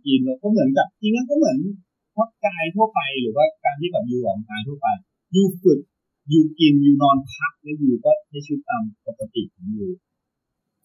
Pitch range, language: 145-225 Hz, Thai